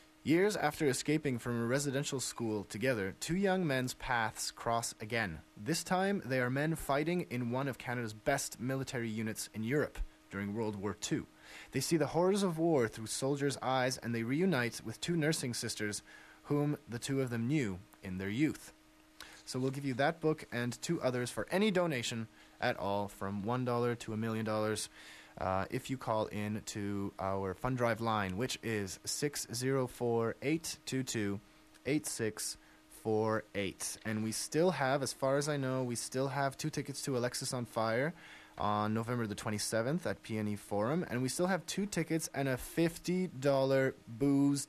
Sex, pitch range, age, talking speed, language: male, 110-140 Hz, 30-49, 165 wpm, English